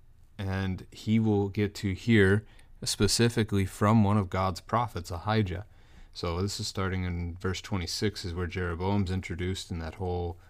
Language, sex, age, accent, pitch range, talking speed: English, male, 30-49, American, 90-110 Hz, 155 wpm